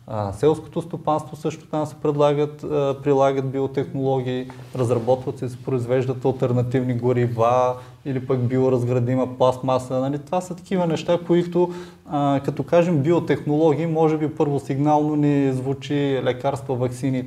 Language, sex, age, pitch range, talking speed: Bulgarian, male, 20-39, 130-155 Hz, 130 wpm